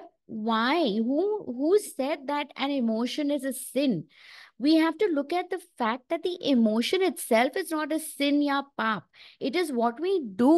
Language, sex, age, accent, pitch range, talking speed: English, female, 20-39, Indian, 215-285 Hz, 180 wpm